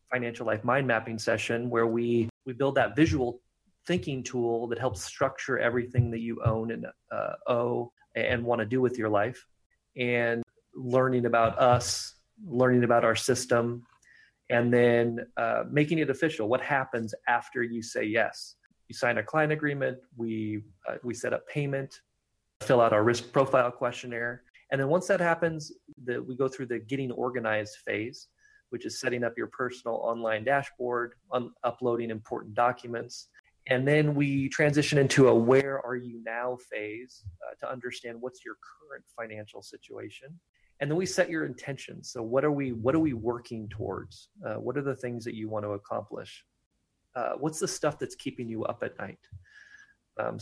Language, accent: English, American